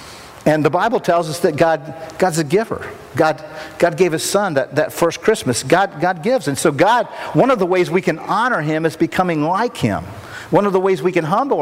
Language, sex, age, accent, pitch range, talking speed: English, male, 50-69, American, 125-165 Hz, 225 wpm